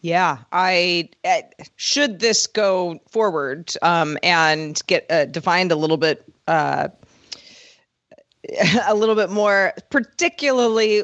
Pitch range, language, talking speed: 175-225 Hz, English, 115 wpm